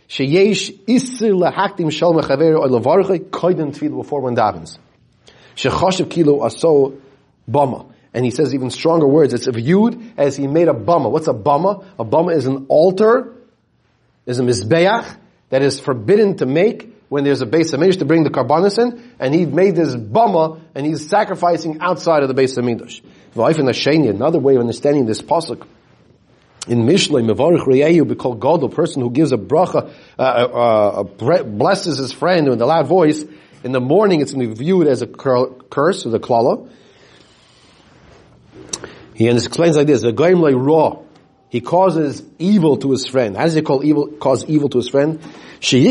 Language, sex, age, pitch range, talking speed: English, male, 40-59, 130-170 Hz, 140 wpm